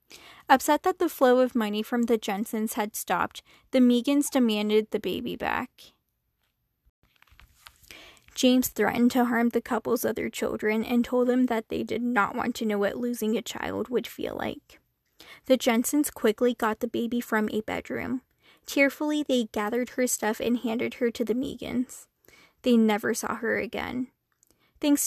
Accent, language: American, English